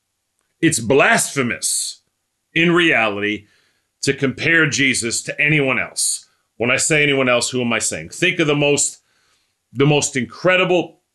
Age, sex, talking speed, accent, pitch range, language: 40-59, male, 140 wpm, American, 110-165 Hz, English